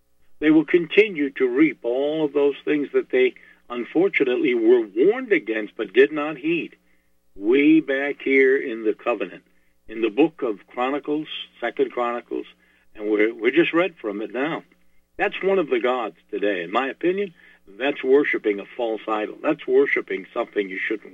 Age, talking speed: 60-79, 170 wpm